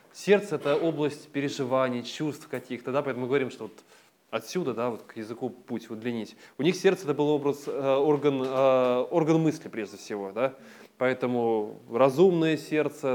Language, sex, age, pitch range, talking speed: Russian, male, 20-39, 125-150 Hz, 175 wpm